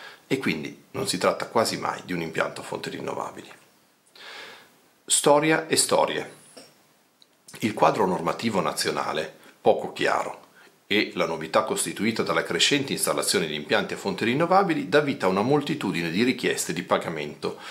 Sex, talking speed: male, 145 wpm